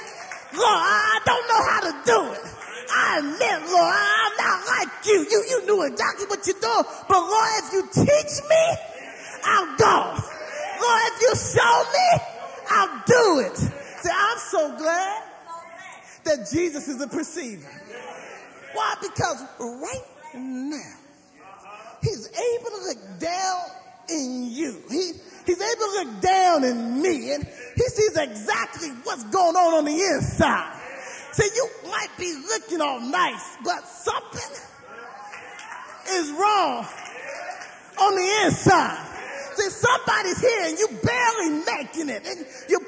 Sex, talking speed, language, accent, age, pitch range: male, 140 wpm, English, American, 30-49, 315-425 Hz